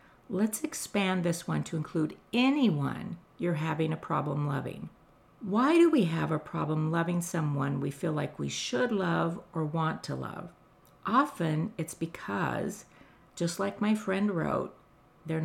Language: English